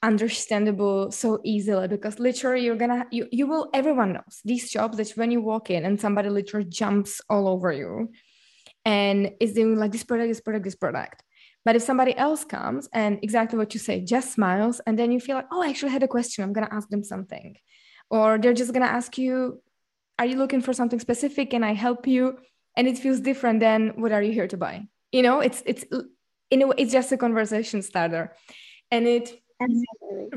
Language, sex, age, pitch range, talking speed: English, female, 20-39, 205-245 Hz, 210 wpm